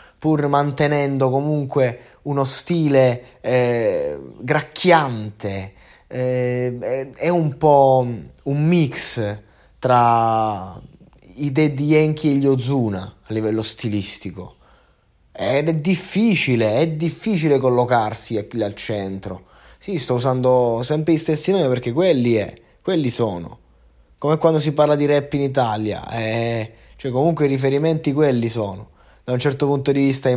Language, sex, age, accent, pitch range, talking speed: Italian, male, 20-39, native, 115-145 Hz, 130 wpm